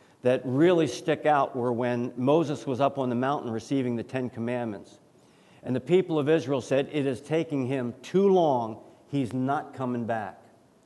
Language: English